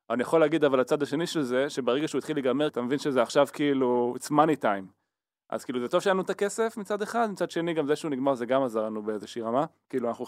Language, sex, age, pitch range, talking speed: Hebrew, male, 20-39, 120-155 Hz, 255 wpm